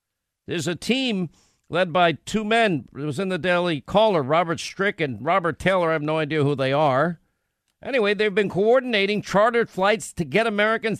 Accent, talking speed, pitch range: American, 185 wpm, 155-200 Hz